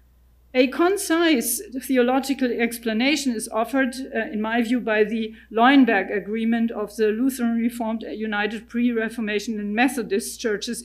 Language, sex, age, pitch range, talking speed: English, female, 50-69, 215-265 Hz, 125 wpm